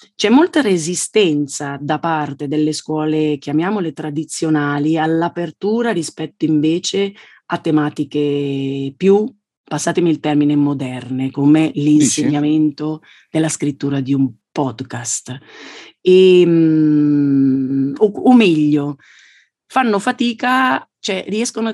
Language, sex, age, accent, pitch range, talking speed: Italian, female, 40-59, native, 145-195 Hz, 95 wpm